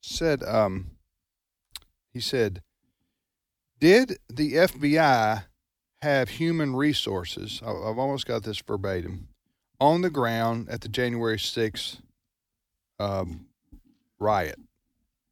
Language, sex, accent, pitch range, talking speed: English, male, American, 100-130 Hz, 95 wpm